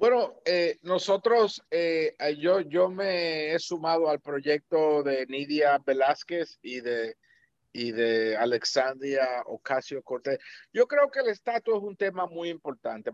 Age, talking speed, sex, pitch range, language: 50-69, 135 wpm, male, 130-180 Hz, Spanish